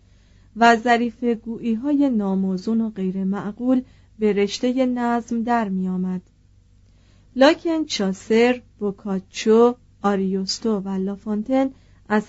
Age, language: 40-59, Persian